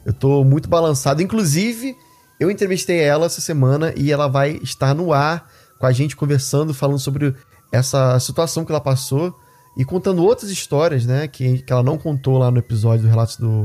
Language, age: Portuguese, 20-39